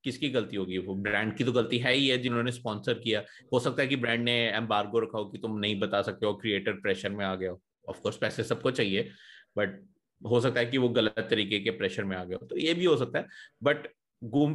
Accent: native